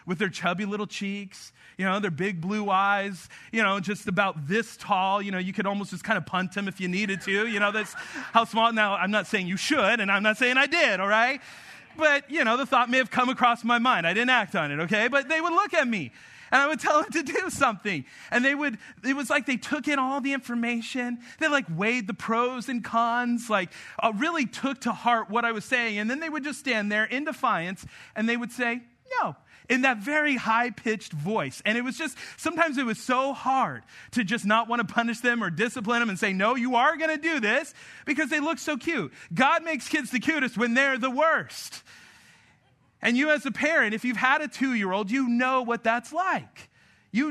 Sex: male